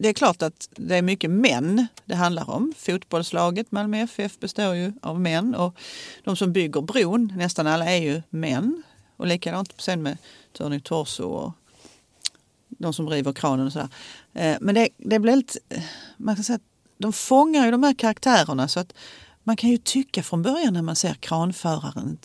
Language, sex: Swedish, female